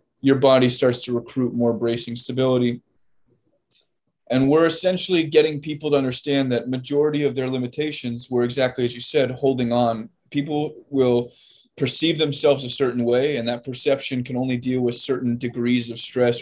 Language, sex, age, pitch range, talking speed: English, male, 20-39, 120-140 Hz, 165 wpm